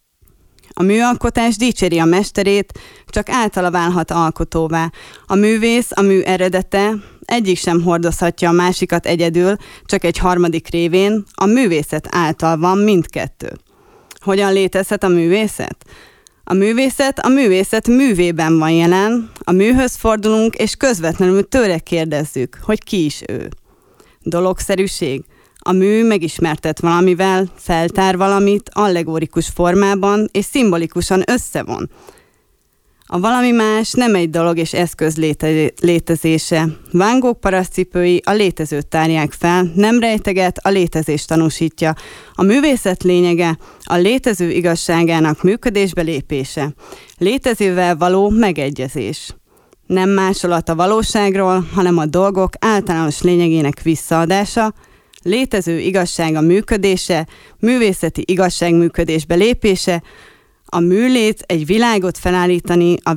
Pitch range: 165-200 Hz